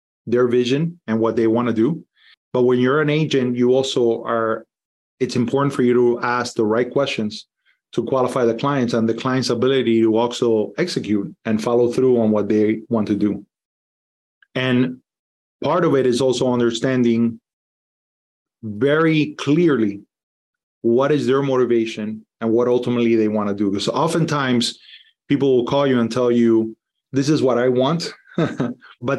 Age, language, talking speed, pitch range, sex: 30-49, English, 165 wpm, 110-130 Hz, male